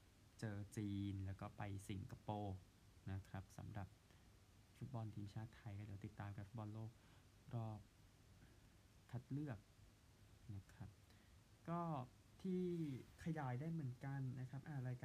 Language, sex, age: Thai, male, 20-39